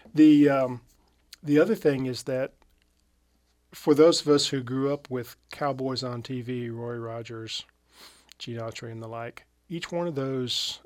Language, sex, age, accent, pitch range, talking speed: English, male, 40-59, American, 115-145 Hz, 160 wpm